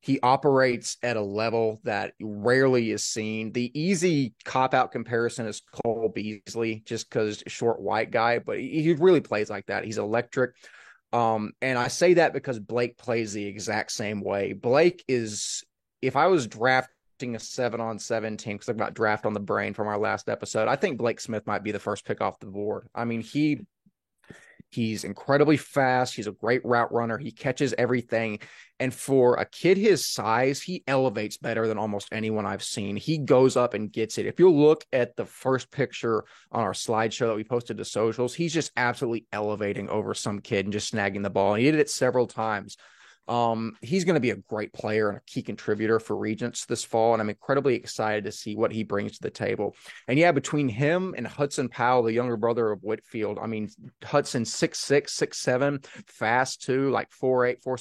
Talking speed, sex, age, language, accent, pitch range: 200 wpm, male, 30-49, English, American, 110-135 Hz